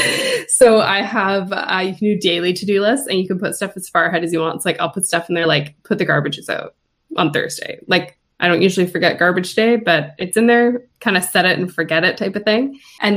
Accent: American